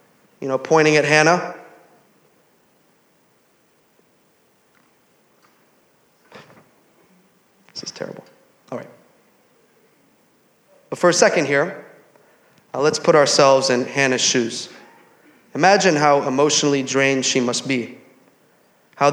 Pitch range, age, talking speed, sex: 140-170 Hz, 30-49, 95 wpm, male